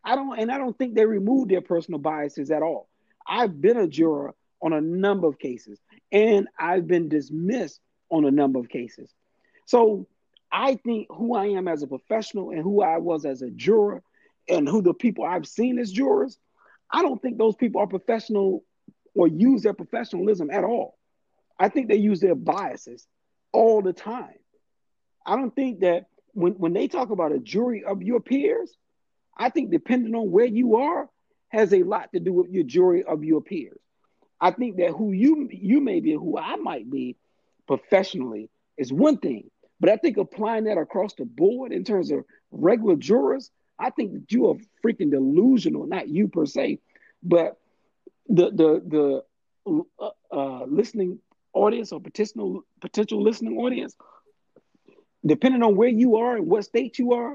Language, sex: English, male